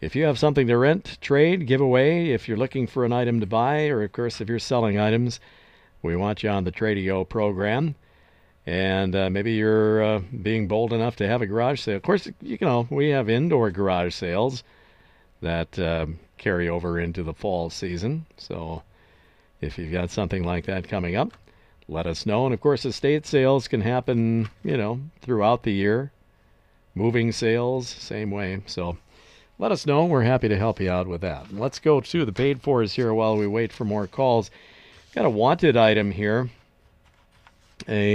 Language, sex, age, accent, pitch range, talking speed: English, male, 50-69, American, 95-125 Hz, 185 wpm